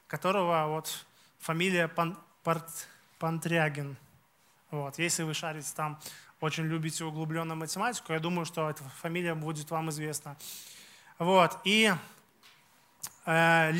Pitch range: 165-195 Hz